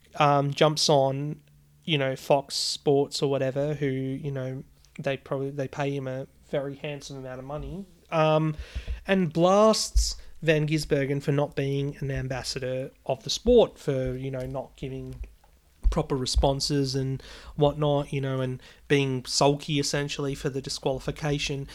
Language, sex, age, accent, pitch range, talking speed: English, male, 30-49, Australian, 135-155 Hz, 150 wpm